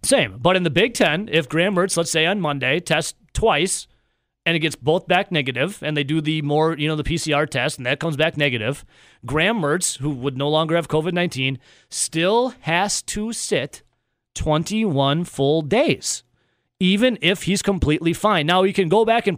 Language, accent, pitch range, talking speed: English, American, 135-175 Hz, 190 wpm